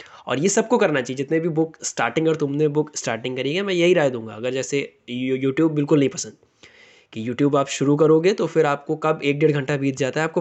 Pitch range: 130-165 Hz